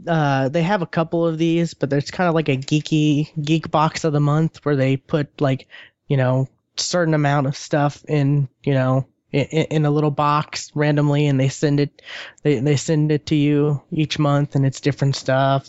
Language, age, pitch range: English, 20-39, 130-155 Hz